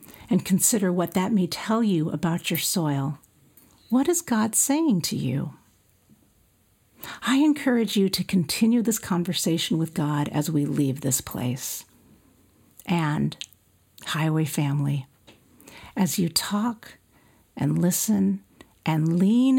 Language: English